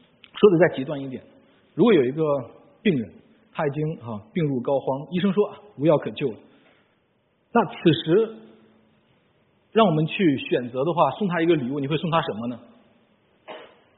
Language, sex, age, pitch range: Chinese, male, 50-69, 145-205 Hz